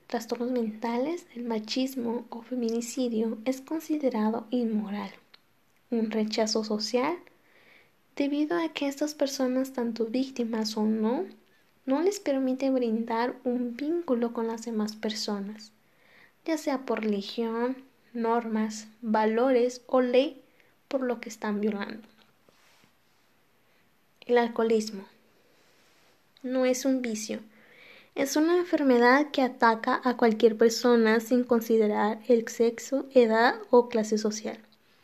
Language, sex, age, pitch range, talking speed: Spanish, female, 20-39, 225-260 Hz, 115 wpm